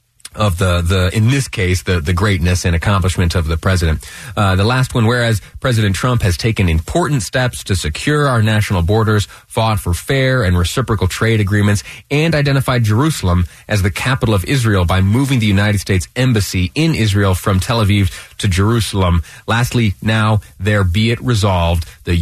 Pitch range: 95-125 Hz